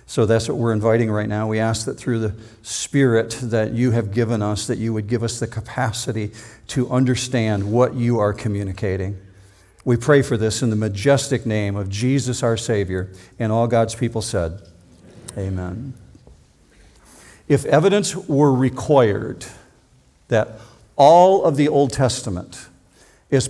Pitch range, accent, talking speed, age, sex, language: 110-140 Hz, American, 155 wpm, 50-69, male, English